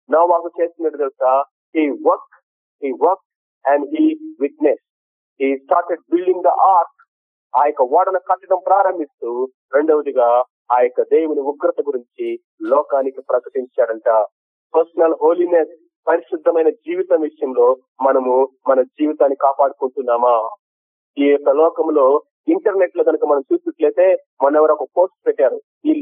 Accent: native